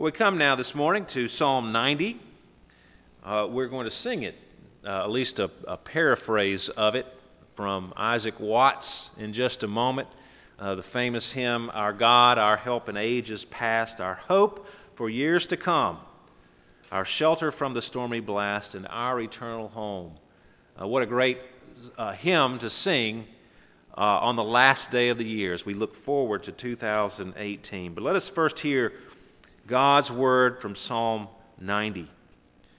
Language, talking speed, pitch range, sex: English, 160 wpm, 100-145 Hz, male